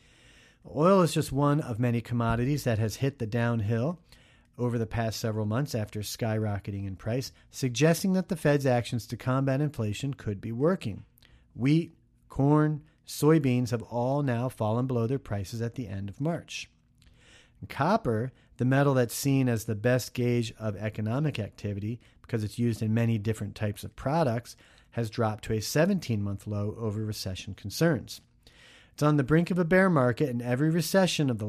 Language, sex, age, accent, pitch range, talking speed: English, male, 40-59, American, 110-150 Hz, 170 wpm